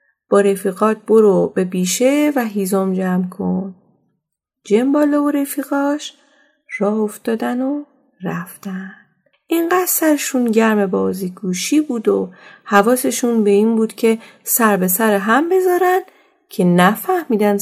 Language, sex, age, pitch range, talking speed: Persian, female, 30-49, 190-270 Hz, 120 wpm